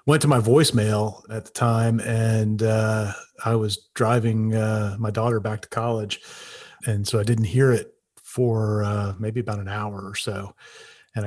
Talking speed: 175 wpm